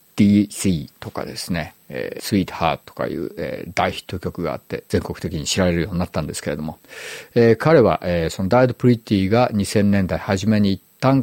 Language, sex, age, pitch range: Japanese, male, 50-69, 90-120 Hz